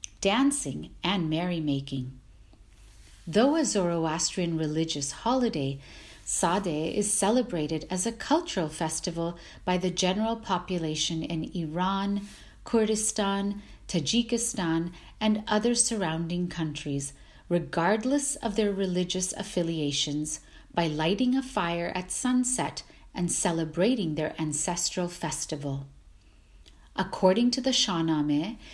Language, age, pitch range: English, 40-59, 160-225 Hz